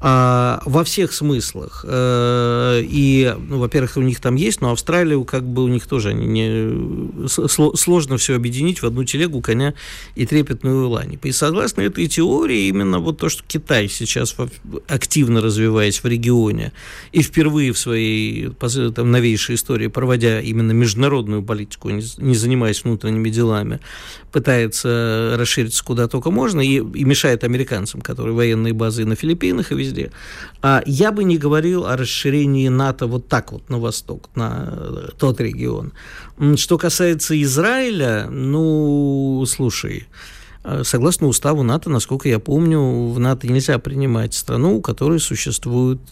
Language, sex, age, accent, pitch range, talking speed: Russian, male, 50-69, native, 115-145 Hz, 145 wpm